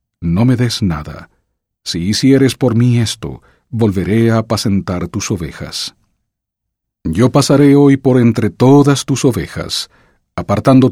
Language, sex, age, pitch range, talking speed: English, male, 50-69, 95-120 Hz, 130 wpm